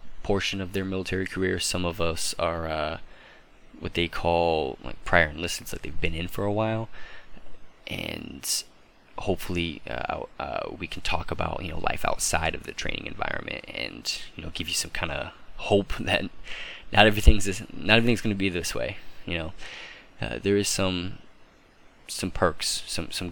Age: 20-39